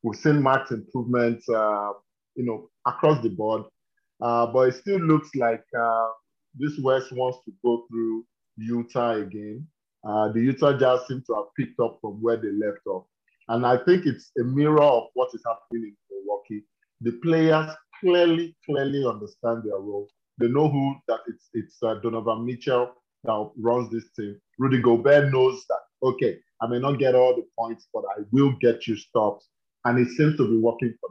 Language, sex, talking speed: English, male, 185 wpm